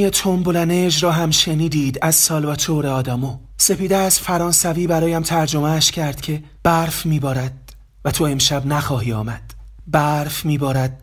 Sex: male